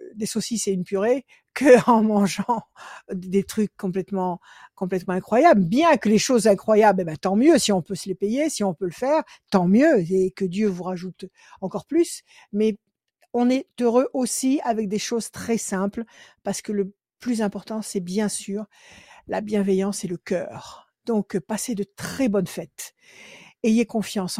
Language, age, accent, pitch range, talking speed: French, 60-79, French, 190-235 Hz, 180 wpm